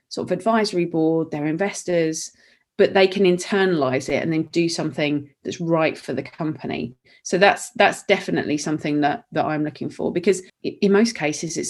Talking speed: 180 wpm